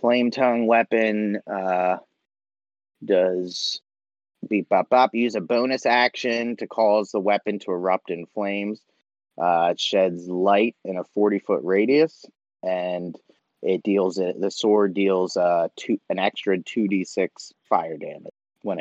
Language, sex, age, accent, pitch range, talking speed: English, male, 30-49, American, 90-110 Hz, 145 wpm